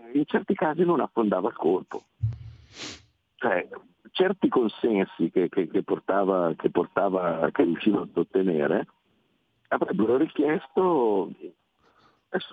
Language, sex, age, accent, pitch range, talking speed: Italian, male, 50-69, native, 90-130 Hz, 105 wpm